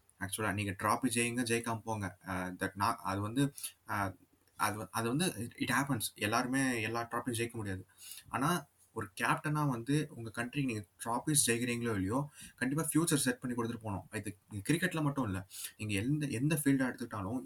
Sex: male